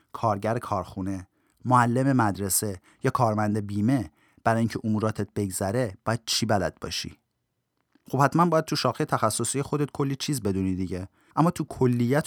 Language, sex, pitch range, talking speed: Persian, male, 105-140 Hz, 145 wpm